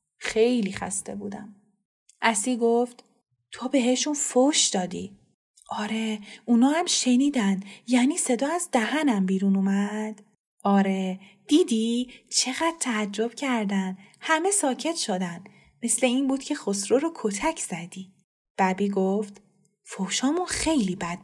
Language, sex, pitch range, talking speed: Persian, female, 190-235 Hz, 115 wpm